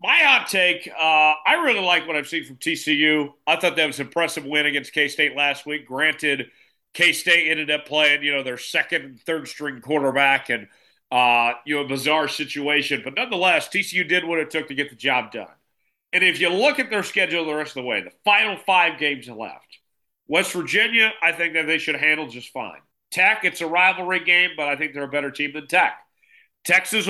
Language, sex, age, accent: English, male, 40-59, American